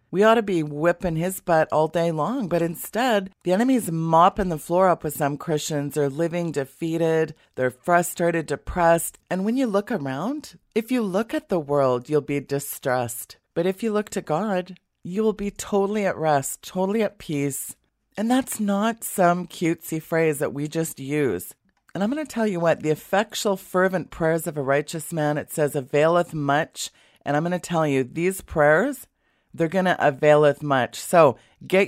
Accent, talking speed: American, 190 wpm